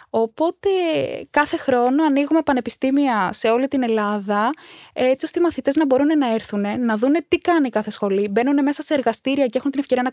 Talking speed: 190 wpm